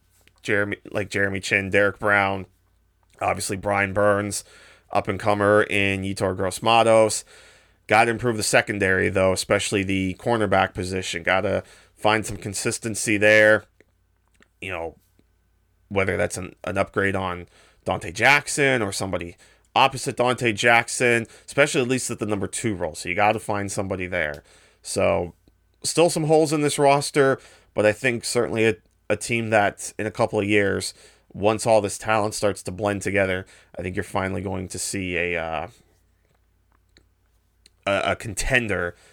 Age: 30-49